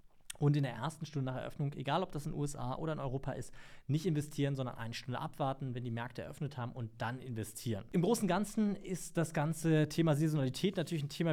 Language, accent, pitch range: German, German, 135-165 Hz